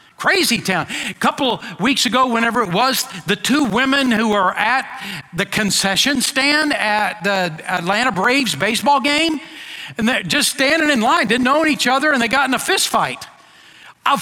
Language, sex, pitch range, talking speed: English, male, 210-285 Hz, 175 wpm